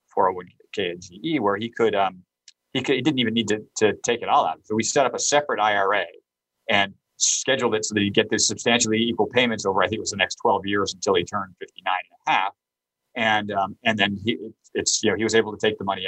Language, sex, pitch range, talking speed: English, male, 100-135 Hz, 255 wpm